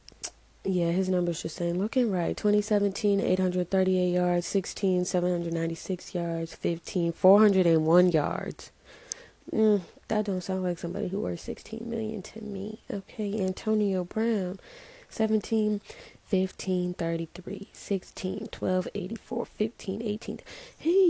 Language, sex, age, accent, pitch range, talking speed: English, female, 20-39, American, 175-215 Hz, 90 wpm